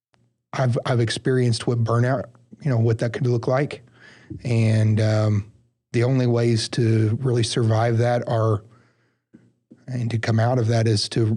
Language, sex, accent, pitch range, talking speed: English, male, American, 115-130 Hz, 160 wpm